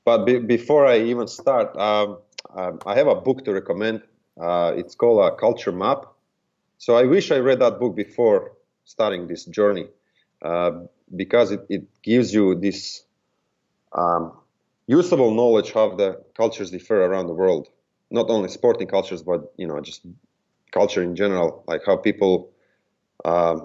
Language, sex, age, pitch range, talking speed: English, male, 30-49, 90-120 Hz, 160 wpm